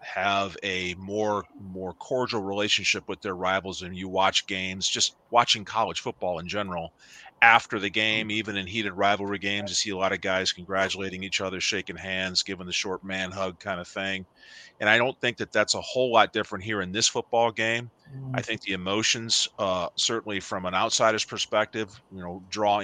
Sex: male